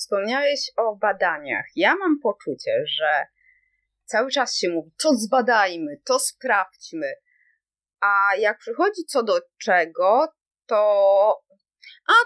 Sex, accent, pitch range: female, native, 195-295 Hz